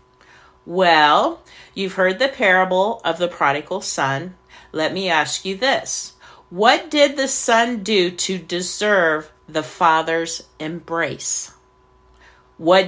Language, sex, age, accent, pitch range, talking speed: English, female, 50-69, American, 165-215 Hz, 115 wpm